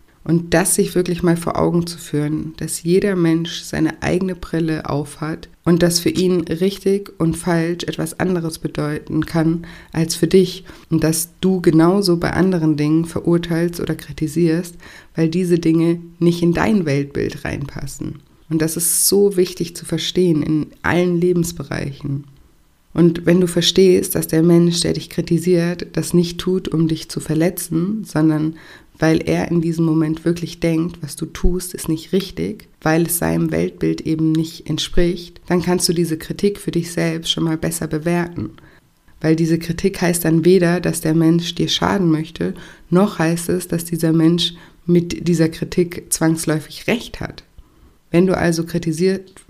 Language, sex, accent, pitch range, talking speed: German, female, German, 160-175 Hz, 165 wpm